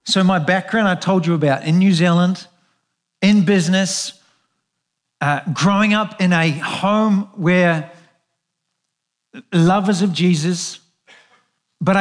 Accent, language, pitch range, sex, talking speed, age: Australian, English, 160-195 Hz, male, 115 wpm, 50-69